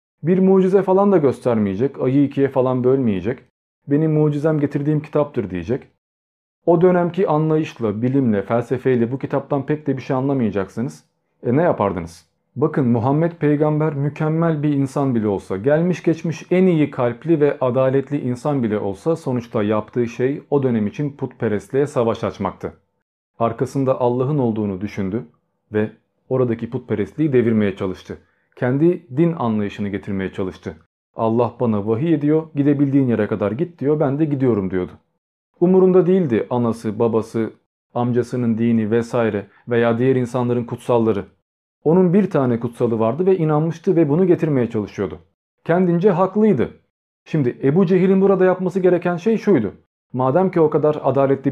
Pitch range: 115-155 Hz